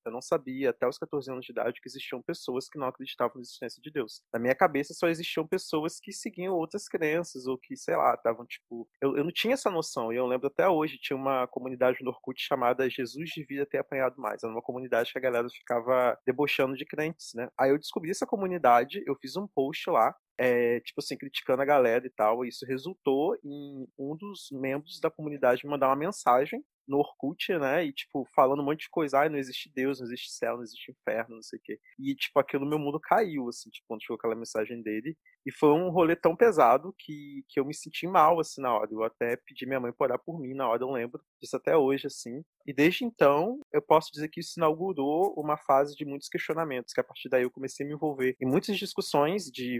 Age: 20-39